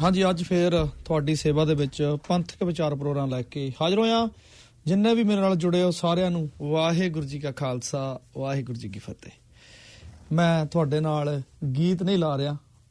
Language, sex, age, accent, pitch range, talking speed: English, male, 30-49, Indian, 150-195 Hz, 145 wpm